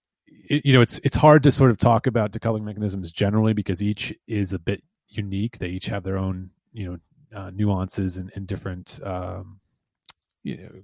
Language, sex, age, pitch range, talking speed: English, male, 30-49, 95-115 Hz, 190 wpm